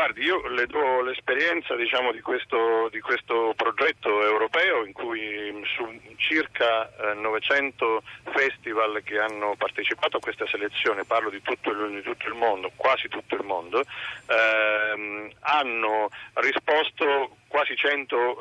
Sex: male